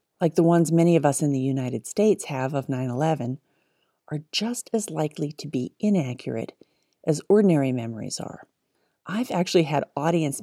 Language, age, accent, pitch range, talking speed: English, 40-59, American, 140-175 Hz, 160 wpm